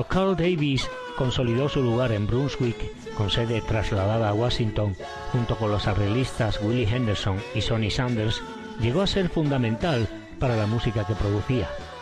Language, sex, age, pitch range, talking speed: Spanish, male, 40-59, 105-140 Hz, 150 wpm